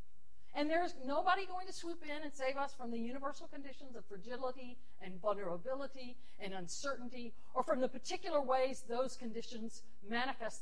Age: 50-69